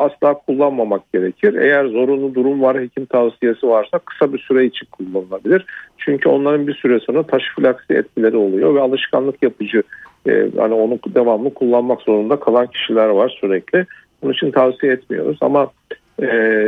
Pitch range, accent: 110-135 Hz, native